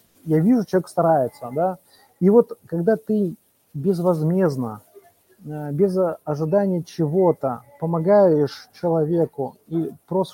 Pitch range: 150-190 Hz